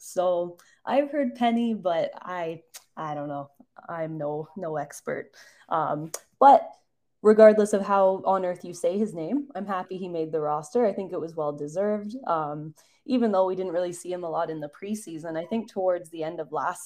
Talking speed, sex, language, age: 195 wpm, female, English, 10-29